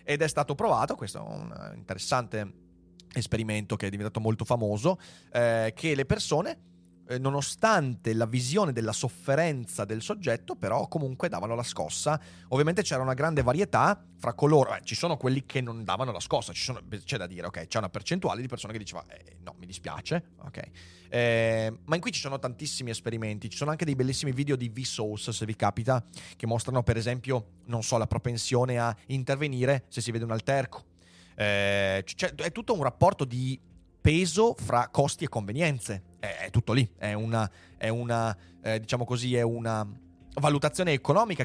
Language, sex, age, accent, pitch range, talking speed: Italian, male, 30-49, native, 105-140 Hz, 180 wpm